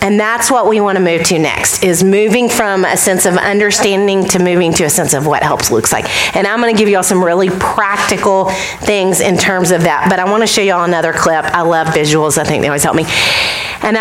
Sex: female